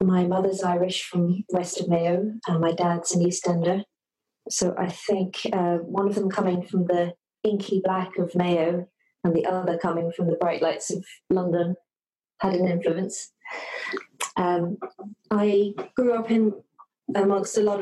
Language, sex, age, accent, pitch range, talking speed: English, female, 30-49, British, 165-200 Hz, 160 wpm